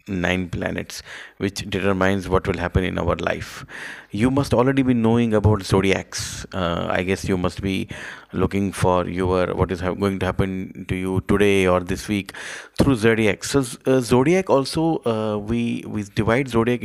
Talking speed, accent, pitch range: 175 wpm, native, 100-125 Hz